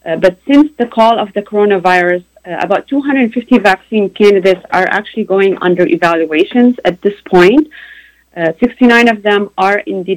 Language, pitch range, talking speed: Arabic, 180-215 Hz, 165 wpm